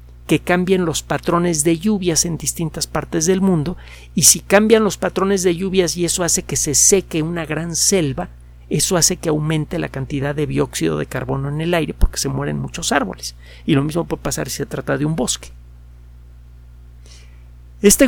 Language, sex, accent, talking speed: Spanish, male, Mexican, 190 wpm